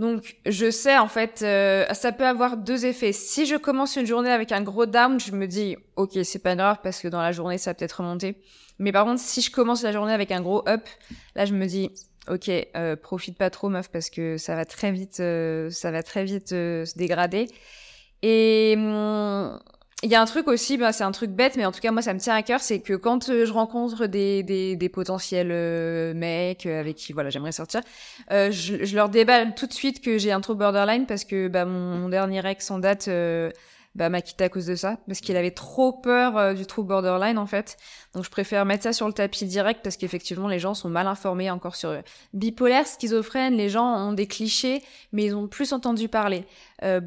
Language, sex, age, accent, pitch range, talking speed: French, female, 20-39, French, 185-225 Hz, 235 wpm